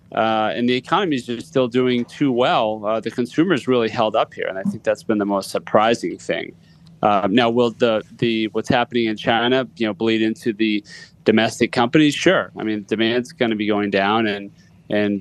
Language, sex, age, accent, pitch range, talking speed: English, male, 30-49, American, 110-125 Hz, 210 wpm